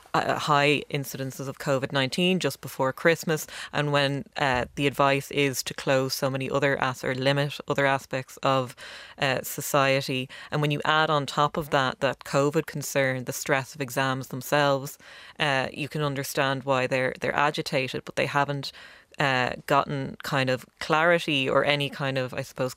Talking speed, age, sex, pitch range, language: 170 wpm, 20-39, female, 135-145 Hz, English